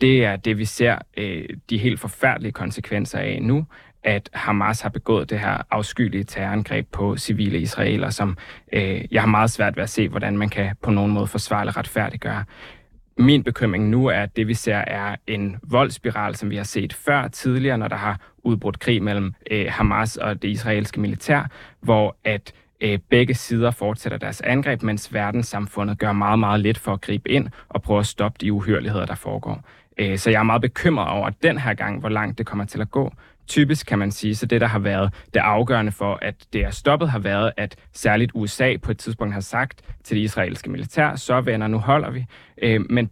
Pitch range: 105-120 Hz